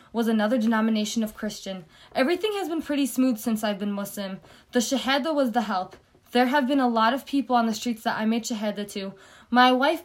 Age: 20-39